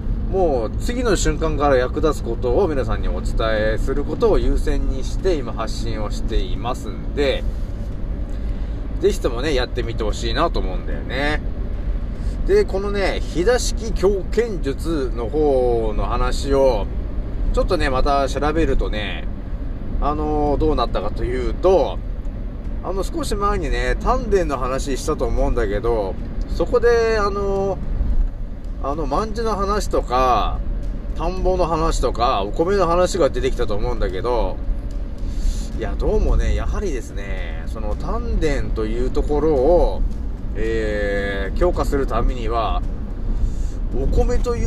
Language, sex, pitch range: Japanese, male, 105-160 Hz